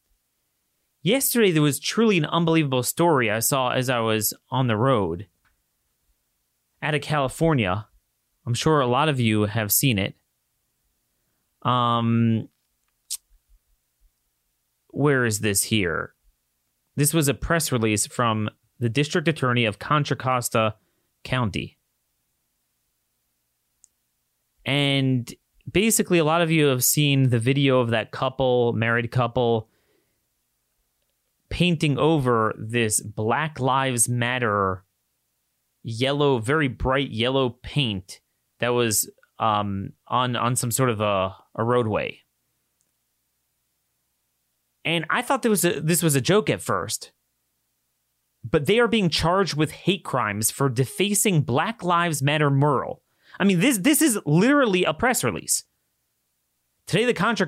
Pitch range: 95-150 Hz